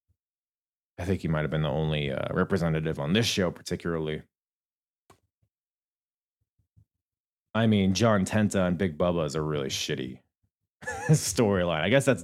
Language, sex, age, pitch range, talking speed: English, male, 30-49, 95-130 Hz, 140 wpm